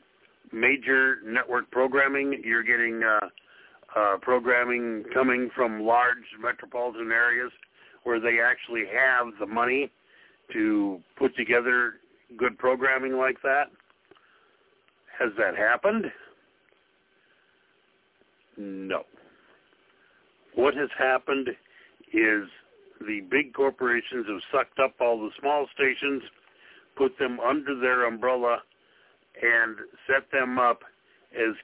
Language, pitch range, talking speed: English, 120-155 Hz, 100 wpm